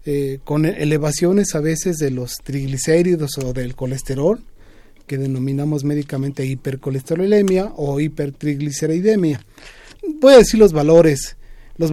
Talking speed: 115 wpm